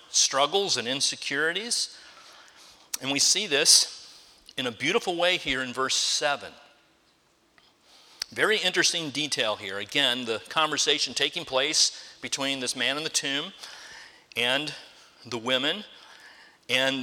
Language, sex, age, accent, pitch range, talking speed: English, male, 40-59, American, 135-165 Hz, 120 wpm